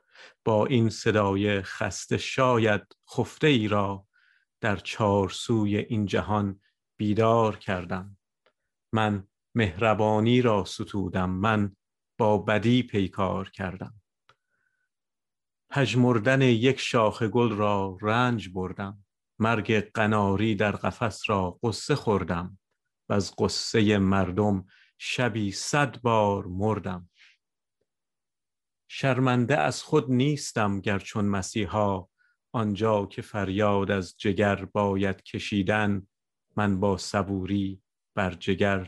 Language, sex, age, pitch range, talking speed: Persian, male, 50-69, 100-115 Hz, 100 wpm